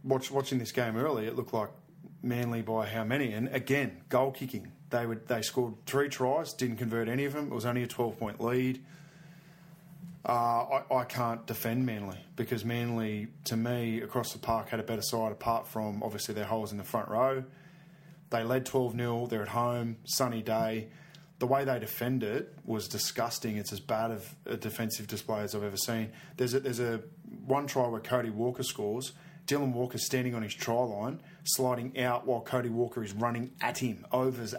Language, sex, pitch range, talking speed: English, male, 110-130 Hz, 195 wpm